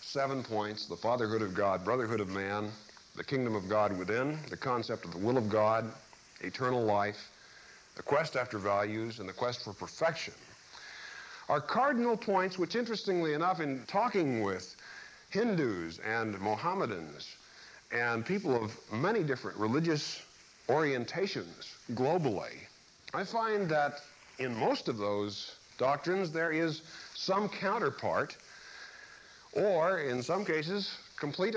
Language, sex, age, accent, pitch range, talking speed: English, male, 50-69, American, 110-175 Hz, 130 wpm